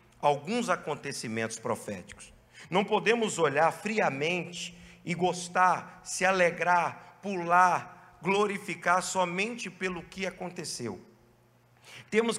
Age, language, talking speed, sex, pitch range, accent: 50-69, Portuguese, 85 wpm, male, 150-200 Hz, Brazilian